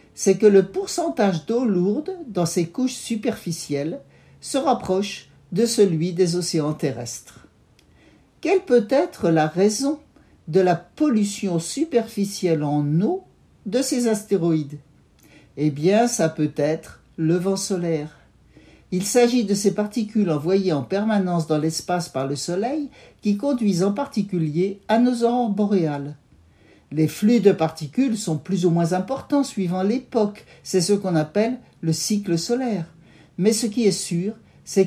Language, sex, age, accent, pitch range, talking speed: French, male, 60-79, French, 165-230 Hz, 145 wpm